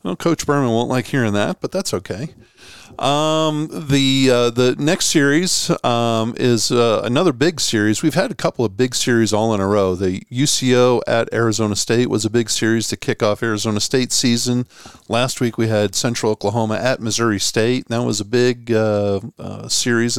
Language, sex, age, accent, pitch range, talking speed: English, male, 50-69, American, 110-135 Hz, 190 wpm